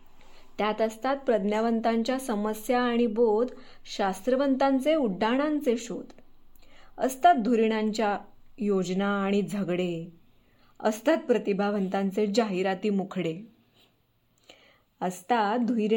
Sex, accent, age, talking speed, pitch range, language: female, native, 20-39, 55 wpm, 200-245 Hz, Marathi